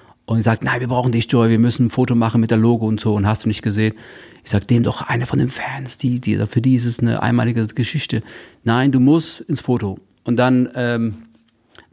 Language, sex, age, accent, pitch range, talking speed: German, male, 40-59, German, 105-125 Hz, 240 wpm